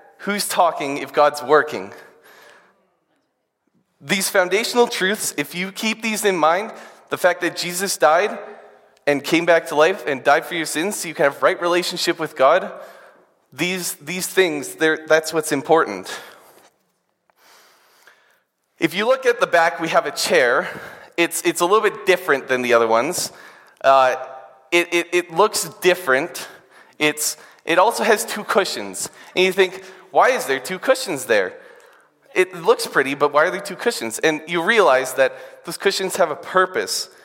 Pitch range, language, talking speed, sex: 150-195 Hz, English, 165 wpm, male